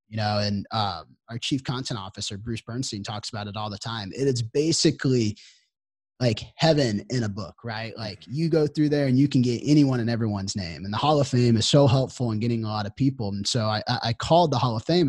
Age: 30-49